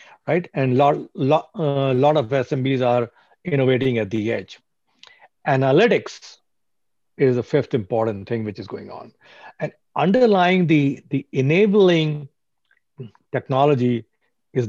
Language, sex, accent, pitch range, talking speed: English, male, Indian, 125-160 Hz, 125 wpm